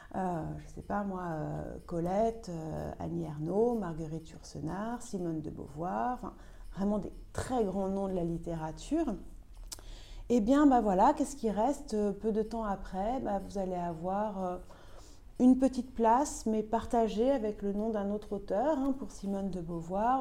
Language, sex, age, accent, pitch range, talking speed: French, female, 40-59, French, 170-245 Hz, 155 wpm